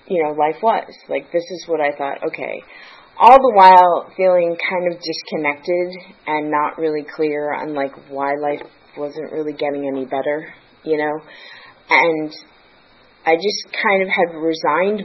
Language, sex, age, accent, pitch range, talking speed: English, female, 30-49, American, 145-180 Hz, 160 wpm